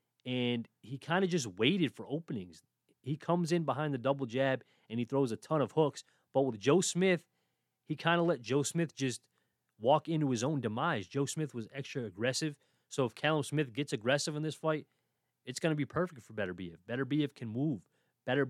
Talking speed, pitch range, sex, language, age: 210 wpm, 120-150 Hz, male, English, 30-49